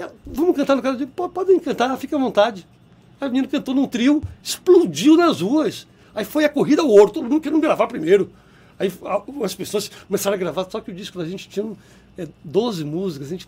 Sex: male